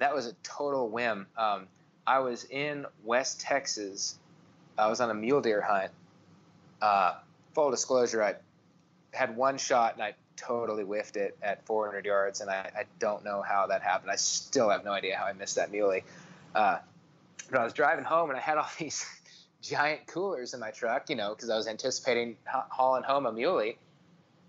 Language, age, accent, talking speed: English, 20-39, American, 190 wpm